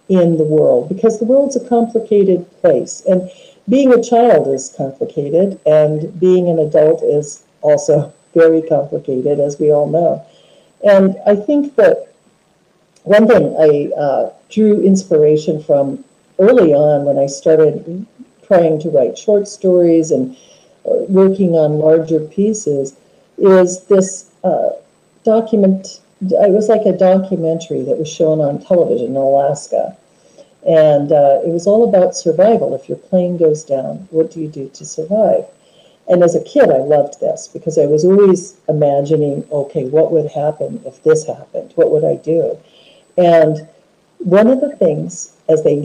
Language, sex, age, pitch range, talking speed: English, female, 50-69, 155-200 Hz, 155 wpm